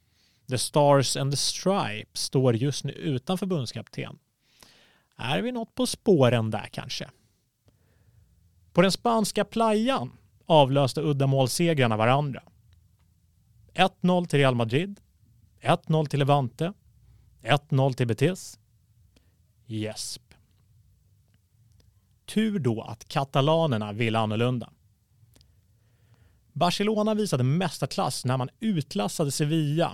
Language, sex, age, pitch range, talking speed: Swedish, male, 30-49, 110-165 Hz, 100 wpm